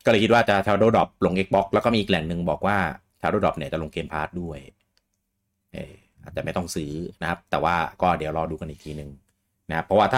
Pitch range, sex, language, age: 80-95 Hz, male, Thai, 30-49